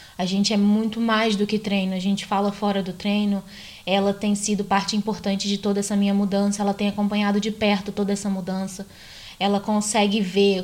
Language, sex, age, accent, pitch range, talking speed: Portuguese, female, 20-39, Brazilian, 200-240 Hz, 195 wpm